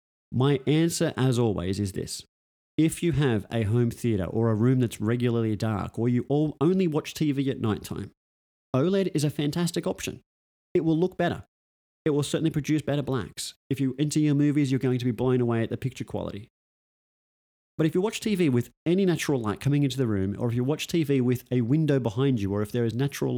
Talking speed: 215 wpm